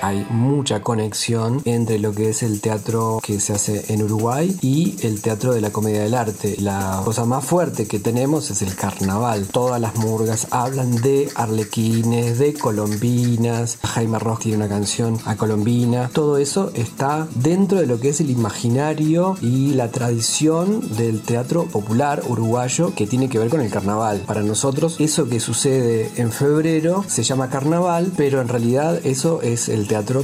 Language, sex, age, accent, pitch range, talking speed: Spanish, male, 40-59, Argentinian, 110-140 Hz, 175 wpm